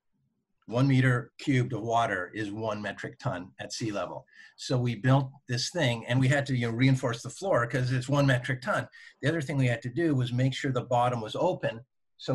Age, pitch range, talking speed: 50-69, 120-145 Hz, 215 wpm